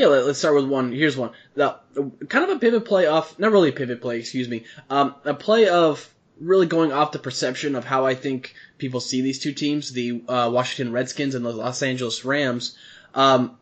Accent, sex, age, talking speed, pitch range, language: American, male, 20-39, 220 wpm, 130-160 Hz, English